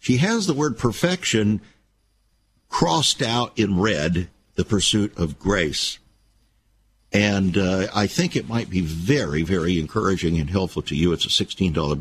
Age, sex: 60-79, male